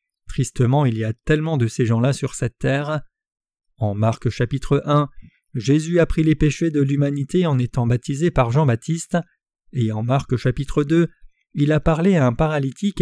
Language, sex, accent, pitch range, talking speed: French, male, French, 125-165 Hz, 175 wpm